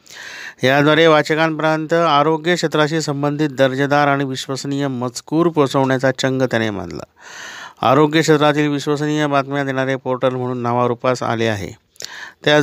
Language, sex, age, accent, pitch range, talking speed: Marathi, male, 50-69, native, 125-150 Hz, 115 wpm